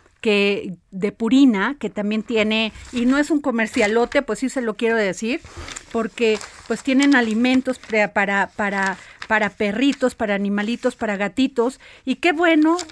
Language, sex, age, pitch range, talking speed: Spanish, female, 40-59, 210-260 Hz, 150 wpm